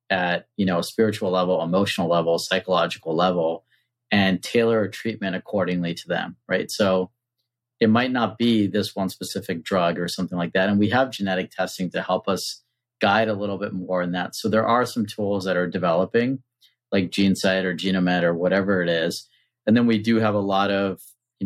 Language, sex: English, male